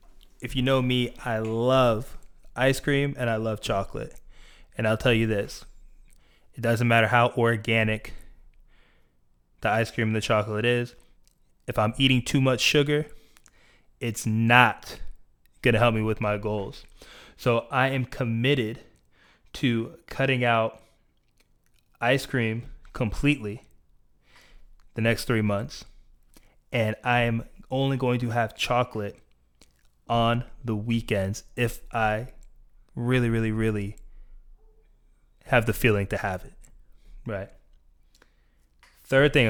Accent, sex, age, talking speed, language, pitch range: American, male, 20-39, 125 wpm, English, 105-125 Hz